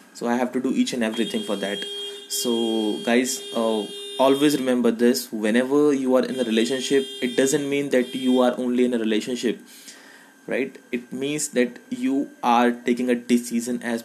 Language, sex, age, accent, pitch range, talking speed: English, male, 20-39, Indian, 115-135 Hz, 180 wpm